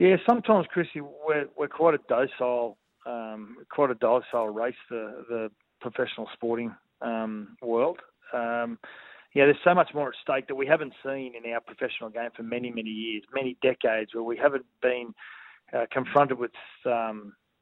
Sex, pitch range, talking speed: male, 115-135 Hz, 165 wpm